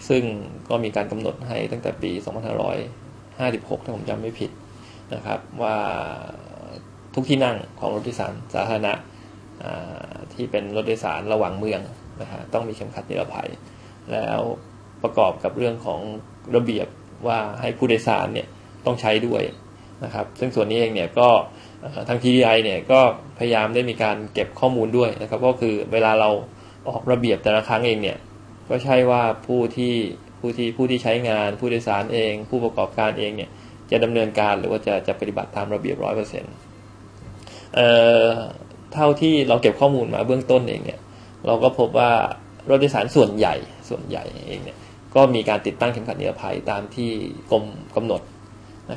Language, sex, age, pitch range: Thai, male, 20-39, 105-125 Hz